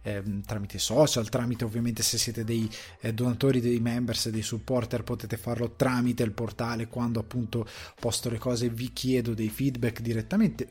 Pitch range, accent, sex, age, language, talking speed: 110-130 Hz, native, male, 20-39, Italian, 165 wpm